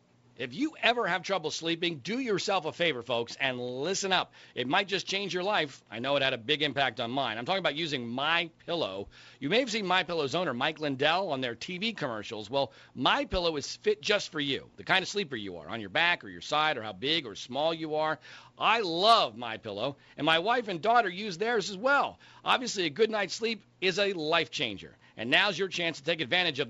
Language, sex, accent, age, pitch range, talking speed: English, male, American, 40-59, 145-205 Hz, 235 wpm